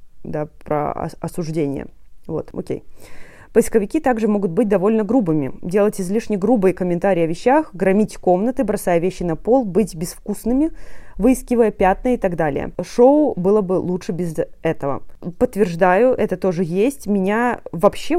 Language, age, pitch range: Russian, 20-39, 175-215 Hz